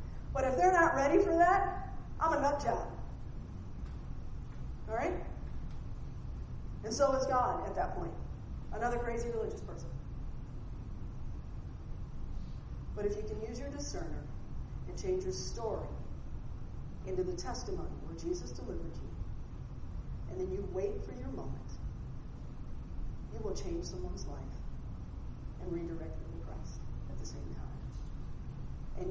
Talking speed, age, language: 130 wpm, 40-59, English